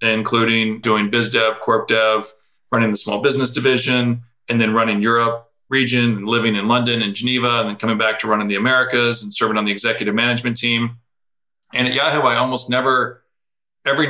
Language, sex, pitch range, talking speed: English, male, 110-120 Hz, 185 wpm